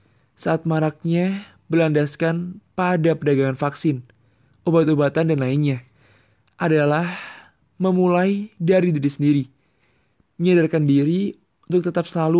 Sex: male